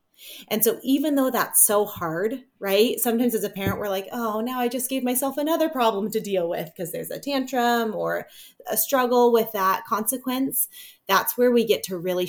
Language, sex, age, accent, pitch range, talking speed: English, female, 20-39, American, 195-245 Hz, 200 wpm